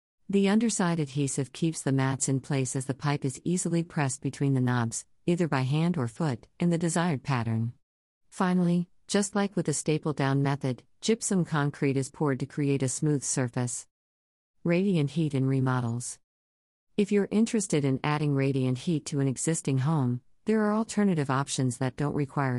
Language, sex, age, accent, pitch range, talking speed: English, female, 50-69, American, 130-160 Hz, 175 wpm